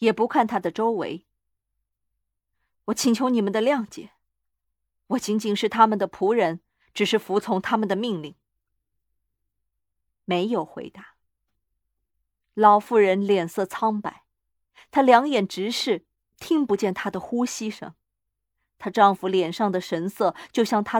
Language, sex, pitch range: Chinese, female, 155-225 Hz